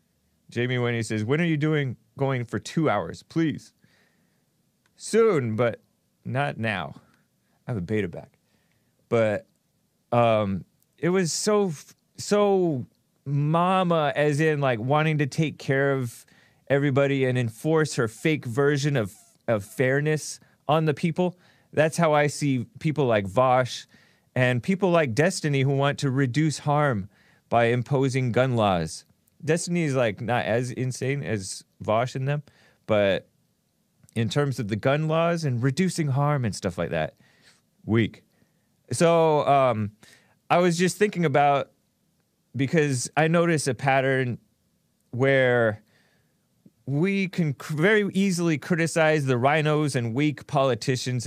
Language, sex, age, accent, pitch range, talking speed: English, male, 30-49, American, 120-155 Hz, 135 wpm